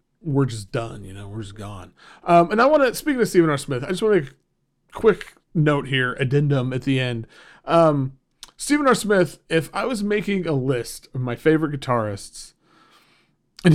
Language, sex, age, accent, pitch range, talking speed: English, male, 40-59, American, 125-165 Hz, 190 wpm